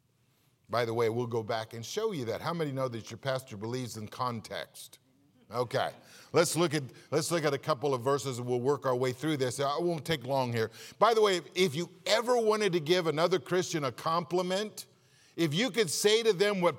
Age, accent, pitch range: 50-69, American, 145-195 Hz